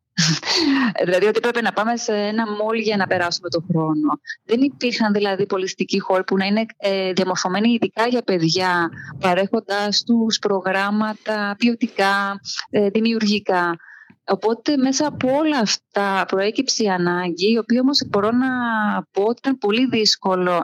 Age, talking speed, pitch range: 20-39, 140 wpm, 180-230 Hz